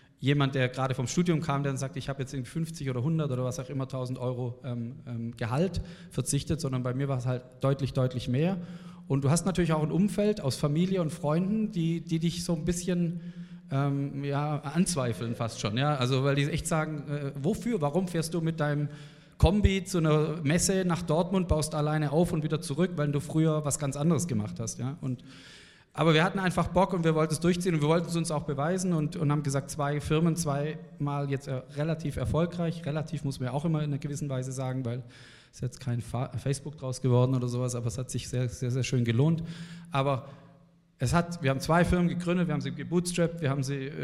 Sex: male